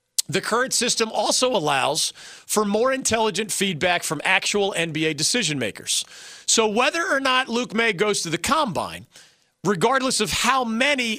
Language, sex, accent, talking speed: English, male, American, 150 wpm